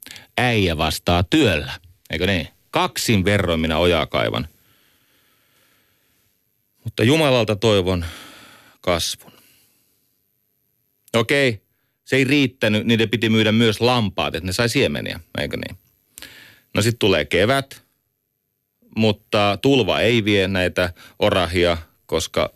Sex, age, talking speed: male, 30-49, 105 wpm